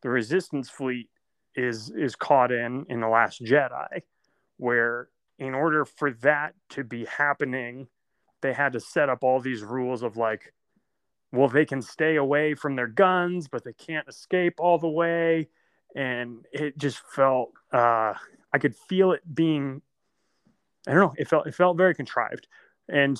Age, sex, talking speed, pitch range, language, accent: 30-49, male, 165 wpm, 125-155 Hz, English, American